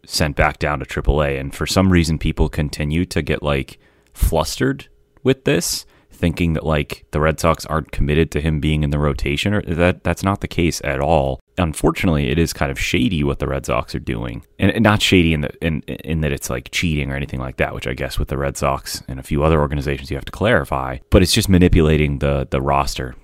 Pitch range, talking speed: 70-85 Hz, 230 wpm